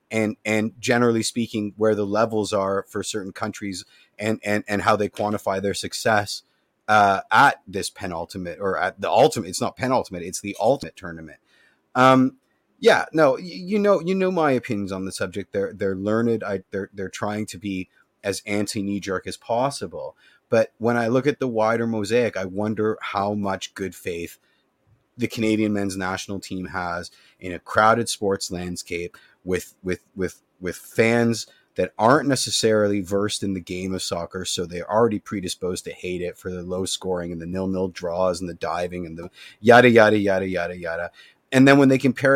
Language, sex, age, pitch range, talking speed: English, male, 30-49, 95-115 Hz, 185 wpm